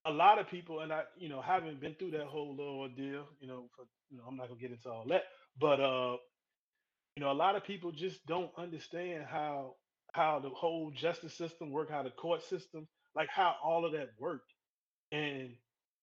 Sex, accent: male, American